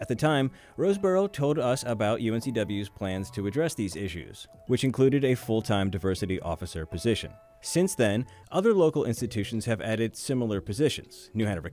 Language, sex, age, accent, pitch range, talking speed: English, male, 30-49, American, 100-130 Hz, 160 wpm